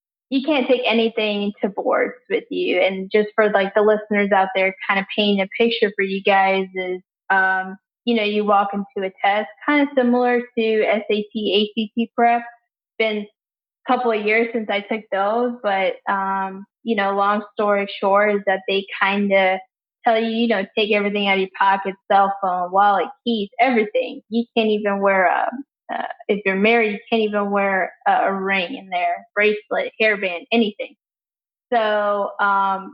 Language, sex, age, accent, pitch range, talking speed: English, female, 10-29, American, 195-235 Hz, 180 wpm